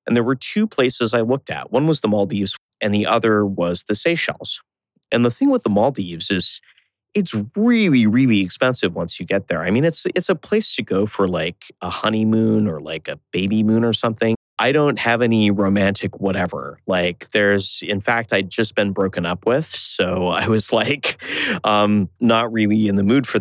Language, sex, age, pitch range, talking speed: English, male, 30-49, 95-115 Hz, 200 wpm